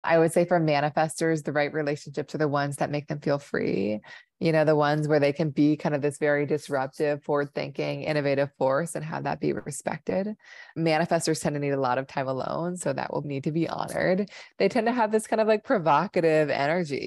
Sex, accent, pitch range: female, American, 140-160 Hz